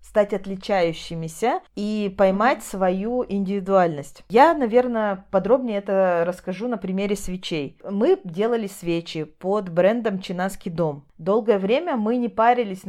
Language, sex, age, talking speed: Russian, female, 30-49, 120 wpm